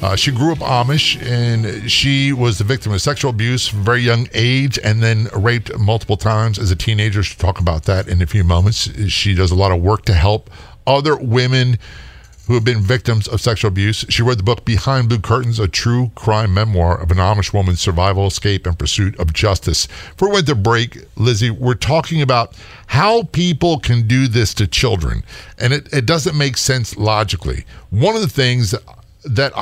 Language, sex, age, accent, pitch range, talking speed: English, male, 50-69, American, 100-130 Hz, 205 wpm